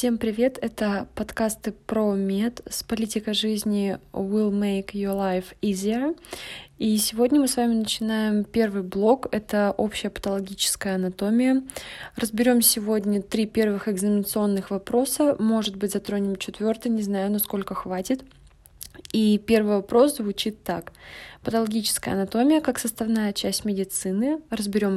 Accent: native